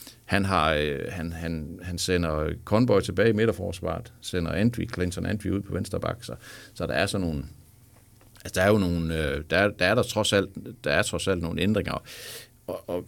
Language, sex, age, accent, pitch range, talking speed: Danish, male, 60-79, native, 85-110 Hz, 195 wpm